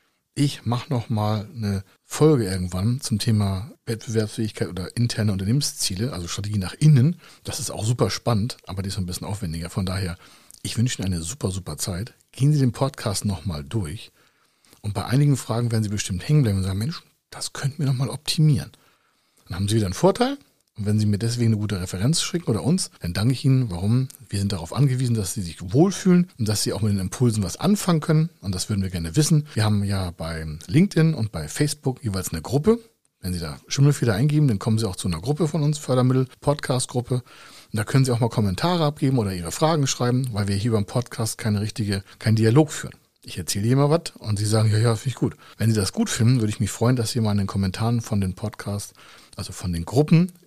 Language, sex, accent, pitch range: German, male, German, 100-135 Hz